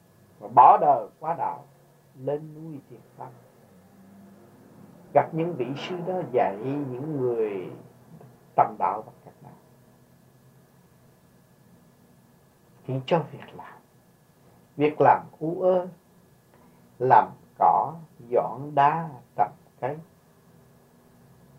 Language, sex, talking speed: Vietnamese, male, 95 wpm